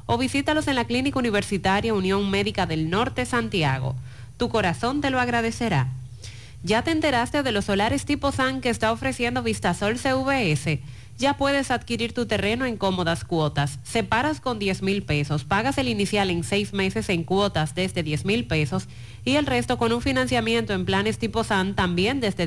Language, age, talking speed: Spanish, 30-49, 175 wpm